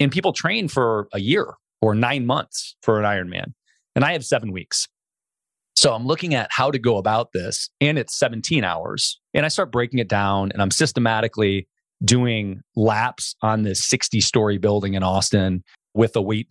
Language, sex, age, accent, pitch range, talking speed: English, male, 30-49, American, 100-130 Hz, 180 wpm